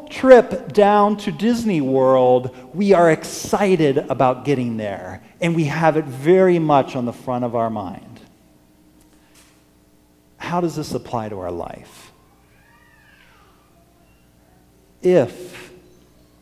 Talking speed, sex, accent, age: 115 wpm, male, American, 50-69